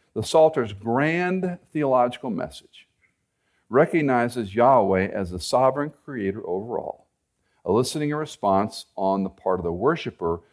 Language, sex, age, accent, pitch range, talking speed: English, male, 50-69, American, 95-135 Hz, 120 wpm